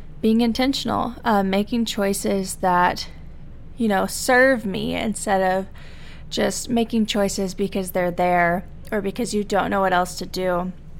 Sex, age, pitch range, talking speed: female, 20-39, 195-240 Hz, 145 wpm